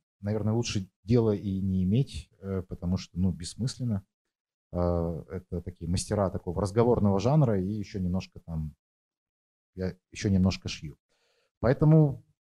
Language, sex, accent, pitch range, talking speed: Ukrainian, male, native, 90-115 Hz, 120 wpm